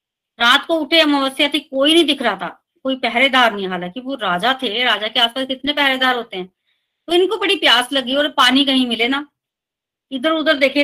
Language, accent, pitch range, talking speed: Hindi, native, 235-290 Hz, 205 wpm